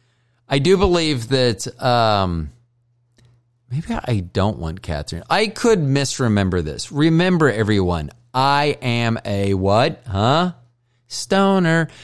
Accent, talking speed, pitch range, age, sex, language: American, 110 wpm, 105-135 Hz, 30-49, male, English